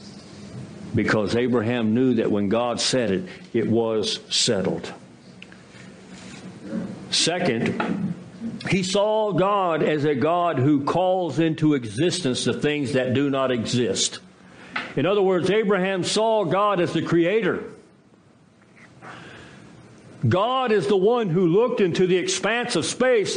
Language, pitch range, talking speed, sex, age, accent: English, 140-225 Hz, 125 wpm, male, 60-79, American